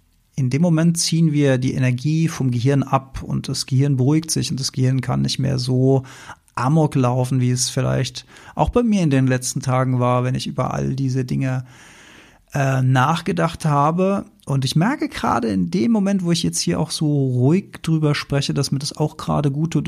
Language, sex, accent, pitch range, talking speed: German, male, German, 130-155 Hz, 200 wpm